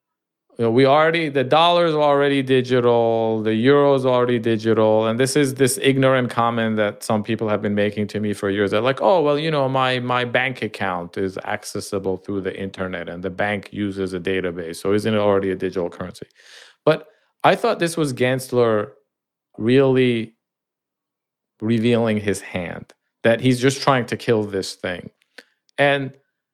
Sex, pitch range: male, 110-145 Hz